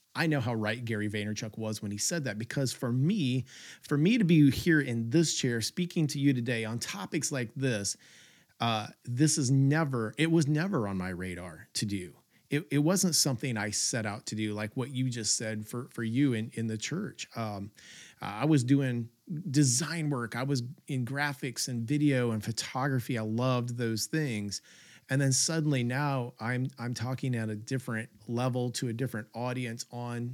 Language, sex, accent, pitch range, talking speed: English, male, American, 115-150 Hz, 190 wpm